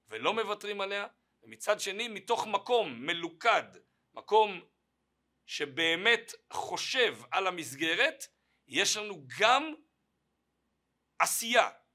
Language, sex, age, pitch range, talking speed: Hebrew, male, 50-69, 140-220 Hz, 85 wpm